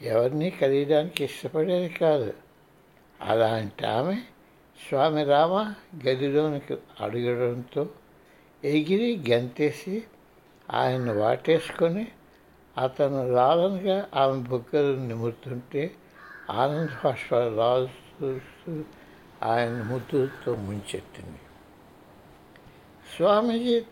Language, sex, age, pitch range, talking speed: Telugu, male, 60-79, 125-170 Hz, 65 wpm